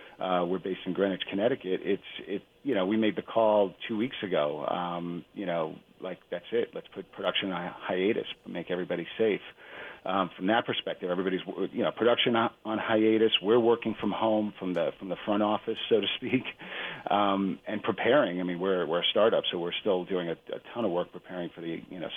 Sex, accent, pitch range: male, American, 95-110 Hz